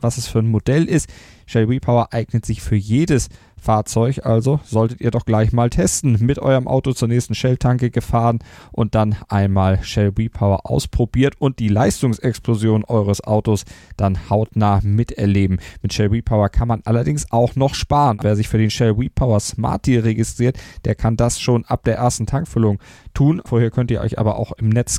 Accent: German